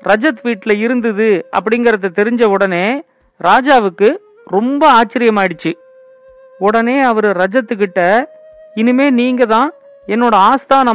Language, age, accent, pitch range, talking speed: Tamil, 40-59, native, 210-270 Hz, 100 wpm